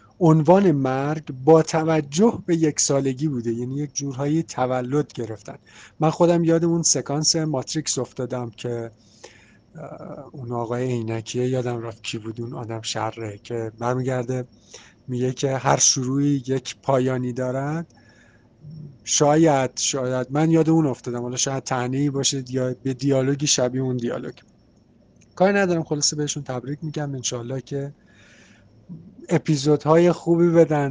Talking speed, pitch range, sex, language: 130 wpm, 125-155 Hz, male, Arabic